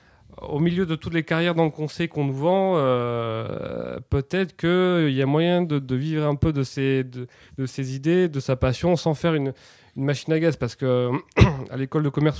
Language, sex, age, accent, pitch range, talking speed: French, male, 30-49, French, 125-155 Hz, 215 wpm